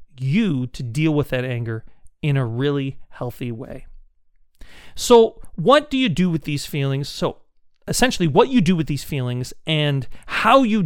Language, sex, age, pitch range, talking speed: English, male, 40-59, 135-190 Hz, 165 wpm